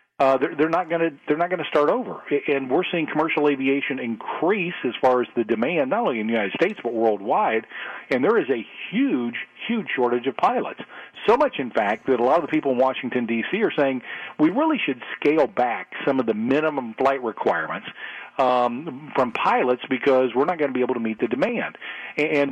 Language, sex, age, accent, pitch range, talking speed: English, male, 40-59, American, 125-155 Hz, 220 wpm